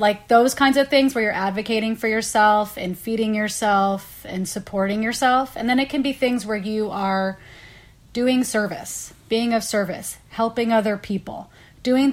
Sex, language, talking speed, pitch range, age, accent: female, English, 170 wpm, 195-240 Hz, 30-49, American